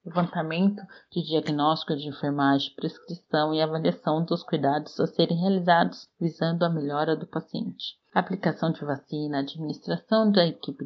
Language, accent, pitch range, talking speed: Portuguese, Brazilian, 140-175 Hz, 135 wpm